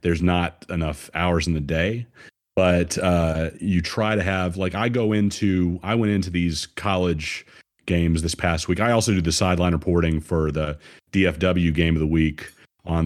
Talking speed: 185 wpm